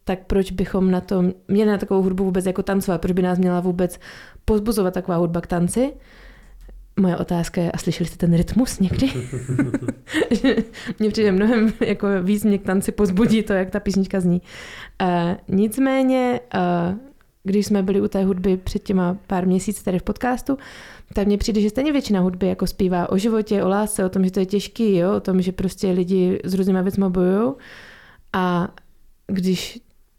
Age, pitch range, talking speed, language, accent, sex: 20-39, 180-215 Hz, 180 wpm, Czech, native, female